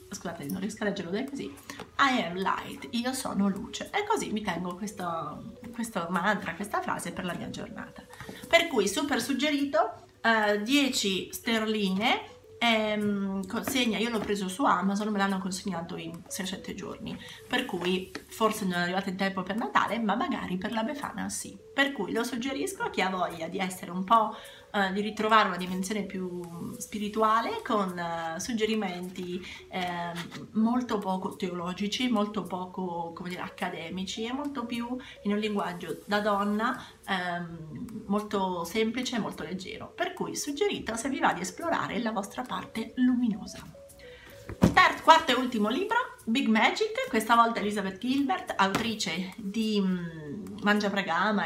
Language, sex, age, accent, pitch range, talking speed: Italian, female, 30-49, native, 190-240 Hz, 155 wpm